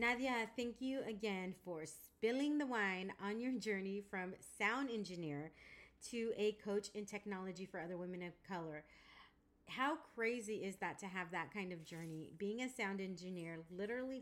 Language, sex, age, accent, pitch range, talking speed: English, female, 30-49, American, 170-215 Hz, 165 wpm